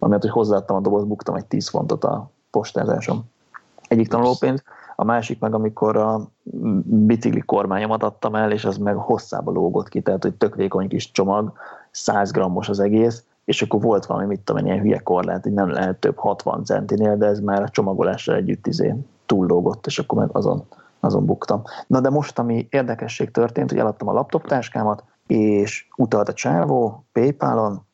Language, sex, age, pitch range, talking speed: Hungarian, male, 30-49, 100-120 Hz, 180 wpm